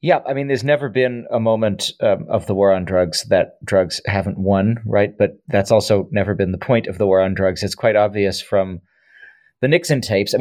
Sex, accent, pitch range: male, American, 95-110 Hz